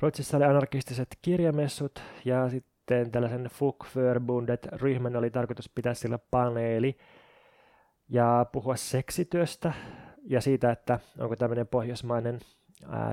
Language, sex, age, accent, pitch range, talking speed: Finnish, male, 20-39, native, 120-135 Hz, 105 wpm